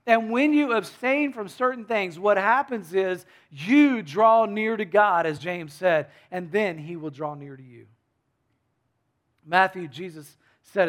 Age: 40-59